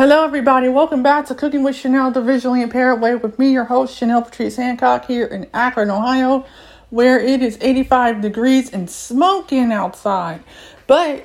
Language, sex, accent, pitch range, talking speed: English, female, American, 235-275 Hz, 170 wpm